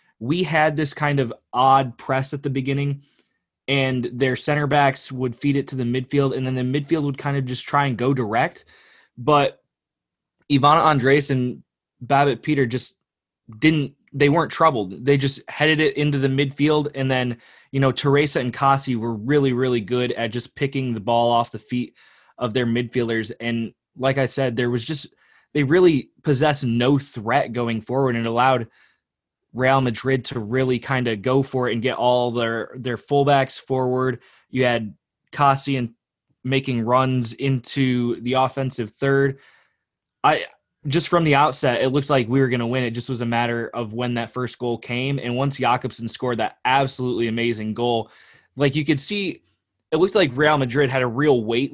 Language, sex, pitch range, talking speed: English, male, 120-140 Hz, 185 wpm